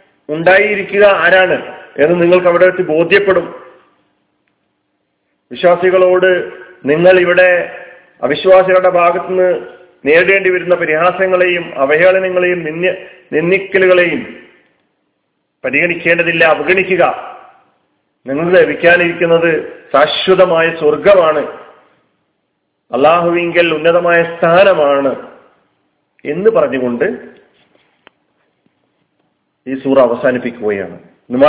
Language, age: Malayalam, 40-59